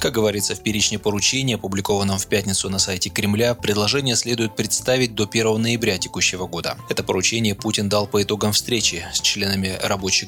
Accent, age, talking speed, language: native, 20-39, 170 wpm, Russian